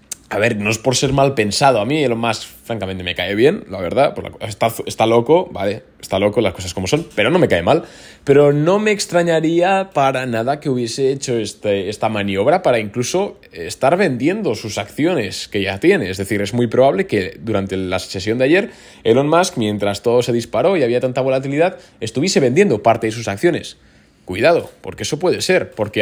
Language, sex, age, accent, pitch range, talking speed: Spanish, male, 20-39, Spanish, 110-140 Hz, 200 wpm